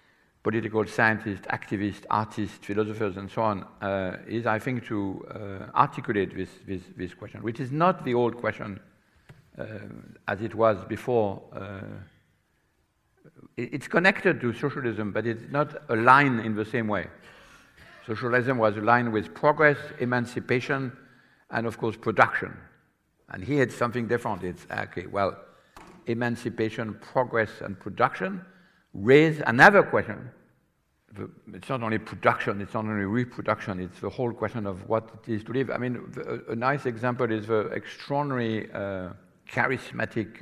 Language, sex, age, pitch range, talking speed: English, male, 60-79, 100-125 Hz, 145 wpm